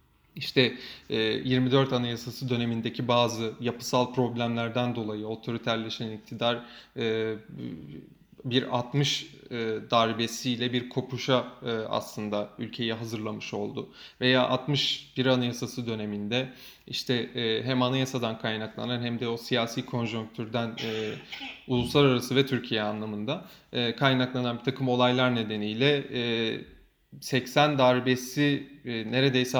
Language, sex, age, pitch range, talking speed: Turkish, male, 30-49, 115-135 Hz, 105 wpm